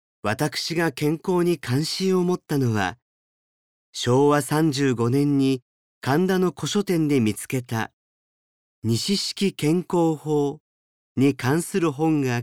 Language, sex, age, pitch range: Japanese, male, 40-59, 120-160 Hz